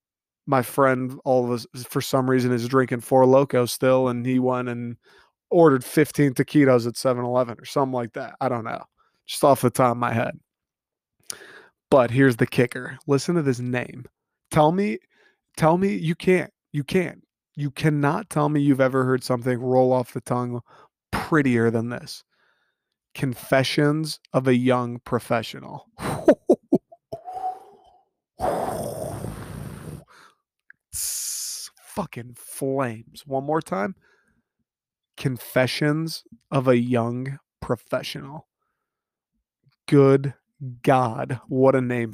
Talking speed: 125 wpm